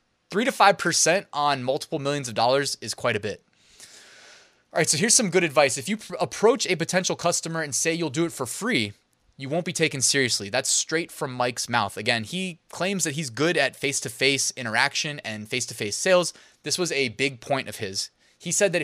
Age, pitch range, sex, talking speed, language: 20-39, 125-175 Hz, male, 205 wpm, English